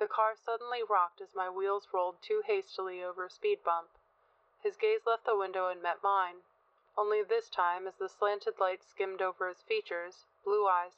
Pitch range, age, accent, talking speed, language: 175-210 Hz, 30-49, American, 190 wpm, English